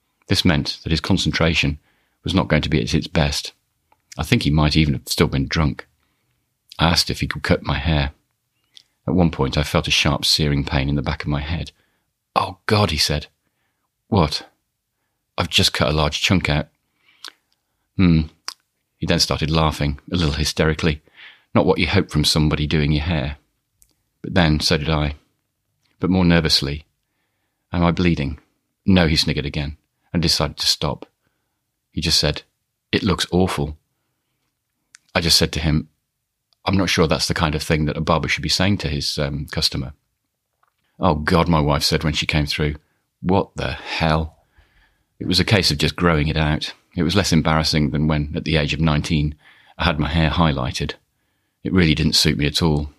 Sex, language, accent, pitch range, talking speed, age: male, English, British, 75-85 Hz, 190 wpm, 40-59